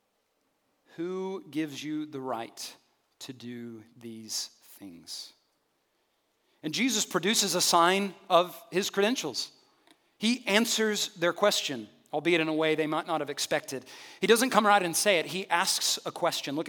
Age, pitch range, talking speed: 40-59, 155-210 Hz, 150 wpm